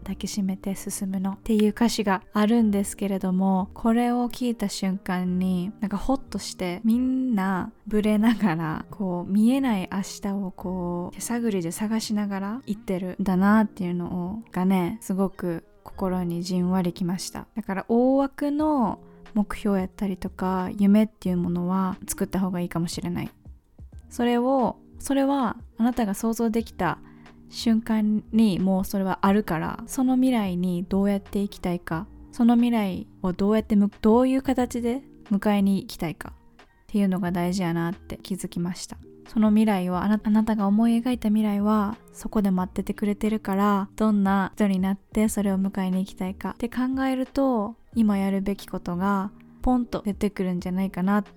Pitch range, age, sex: 185-220 Hz, 20-39, female